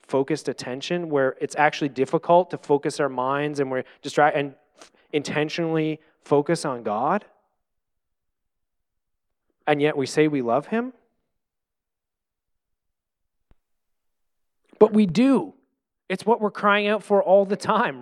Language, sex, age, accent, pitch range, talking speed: English, male, 30-49, American, 135-185 Hz, 125 wpm